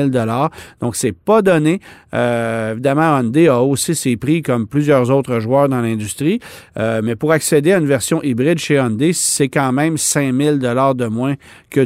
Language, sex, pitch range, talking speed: French, male, 115-145 Hz, 175 wpm